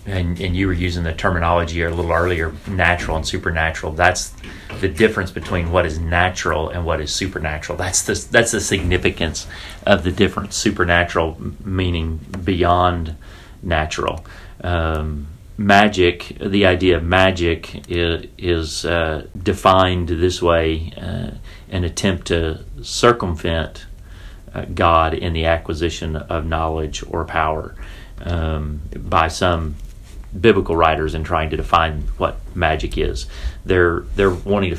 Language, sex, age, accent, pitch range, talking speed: English, male, 40-59, American, 80-95 Hz, 135 wpm